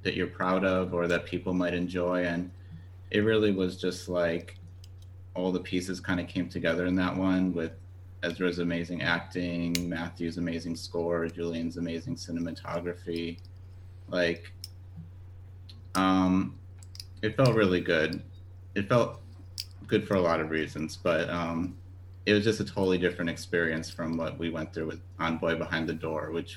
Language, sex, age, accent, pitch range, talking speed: English, male, 30-49, American, 85-95 Hz, 155 wpm